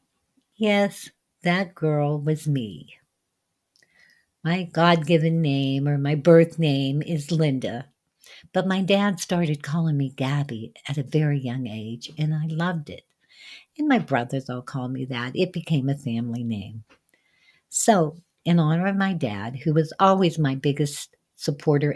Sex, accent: female, American